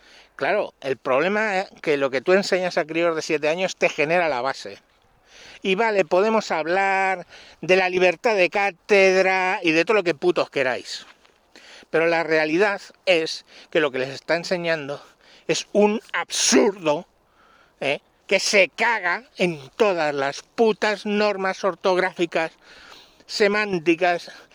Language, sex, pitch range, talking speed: Spanish, male, 155-190 Hz, 140 wpm